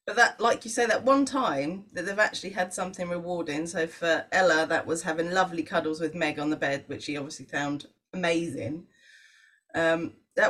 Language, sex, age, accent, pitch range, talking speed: English, female, 30-49, British, 165-235 Hz, 195 wpm